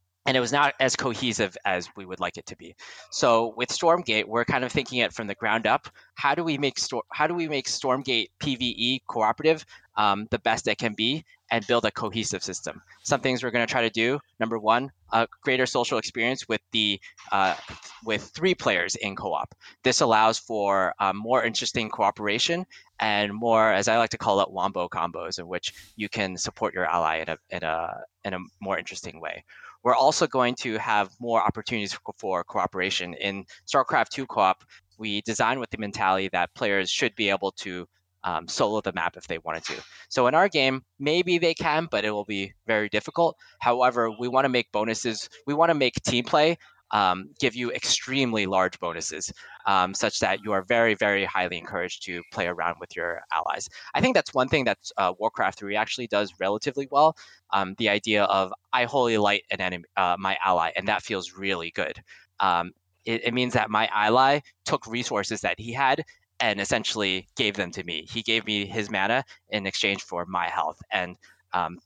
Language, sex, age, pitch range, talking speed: English, male, 20-39, 100-130 Hz, 200 wpm